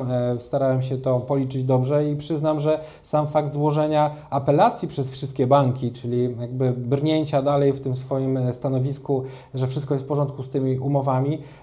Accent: native